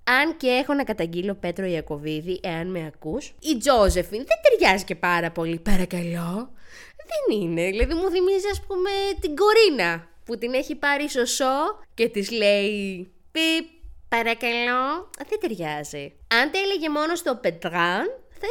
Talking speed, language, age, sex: 150 wpm, Greek, 20-39, female